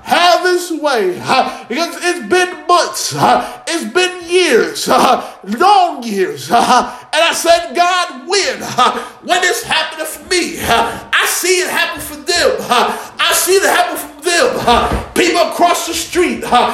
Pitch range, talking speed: 310-395 Hz, 135 wpm